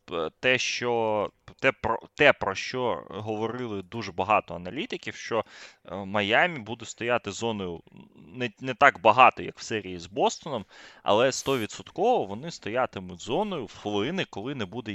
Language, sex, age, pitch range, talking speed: Ukrainian, male, 20-39, 110-160 Hz, 140 wpm